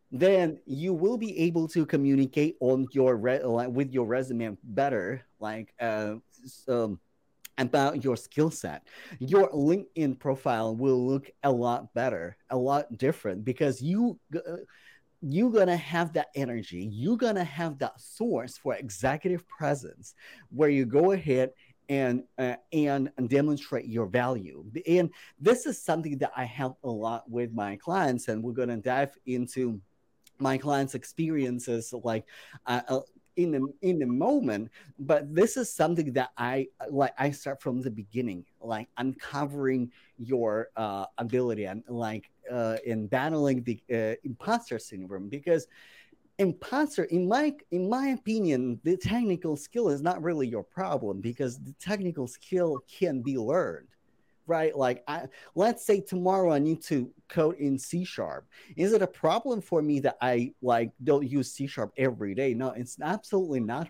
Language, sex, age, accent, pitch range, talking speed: English, male, 30-49, American, 125-165 Hz, 150 wpm